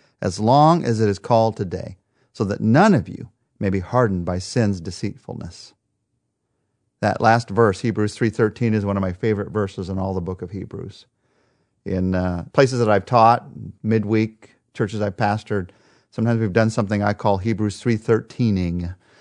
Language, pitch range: English, 105-135 Hz